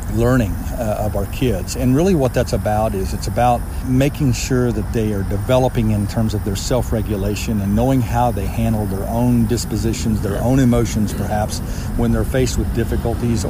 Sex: male